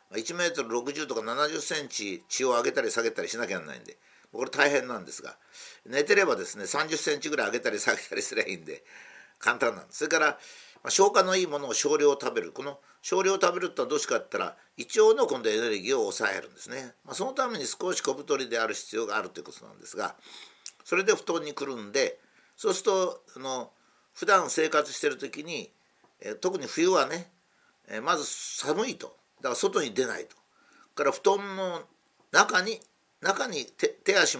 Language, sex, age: Japanese, male, 50-69